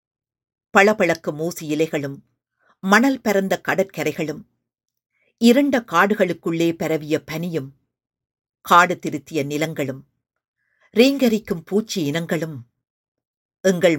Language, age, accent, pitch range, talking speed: Tamil, 50-69, native, 145-200 Hz, 70 wpm